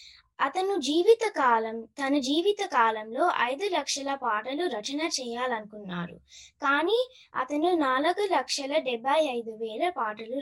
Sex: female